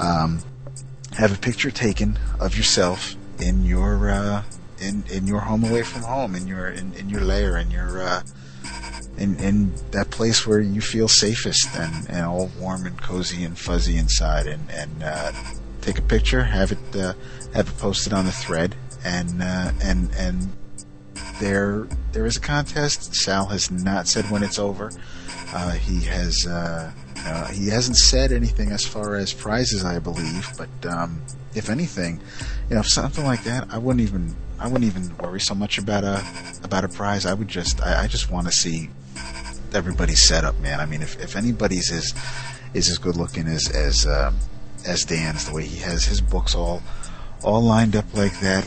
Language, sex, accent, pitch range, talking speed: English, male, American, 85-110 Hz, 190 wpm